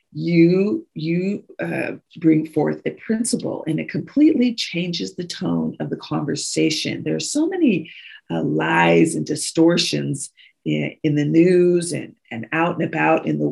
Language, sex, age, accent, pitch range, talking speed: English, female, 40-59, American, 150-195 Hz, 155 wpm